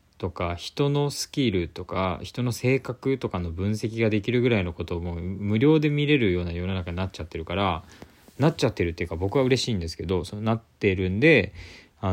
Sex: male